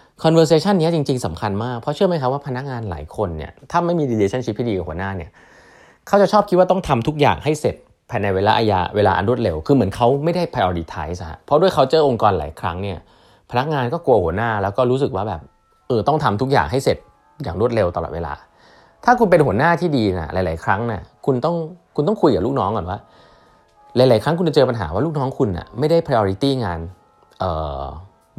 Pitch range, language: 90-140 Hz, Thai